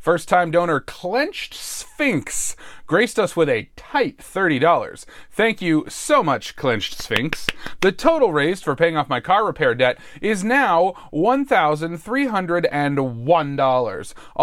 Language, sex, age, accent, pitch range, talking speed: English, male, 30-49, American, 150-240 Hz, 120 wpm